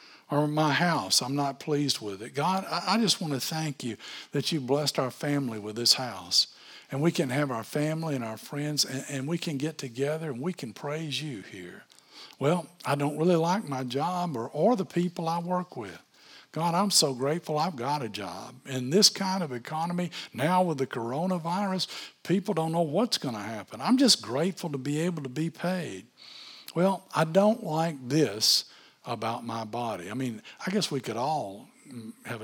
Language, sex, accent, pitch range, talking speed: English, male, American, 125-175 Hz, 200 wpm